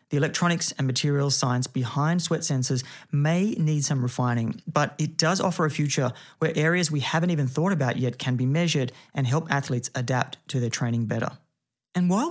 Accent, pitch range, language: Australian, 130-160 Hz, English